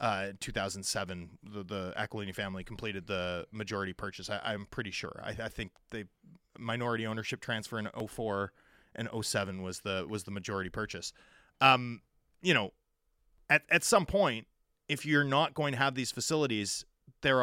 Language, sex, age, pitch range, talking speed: English, male, 30-49, 105-135 Hz, 165 wpm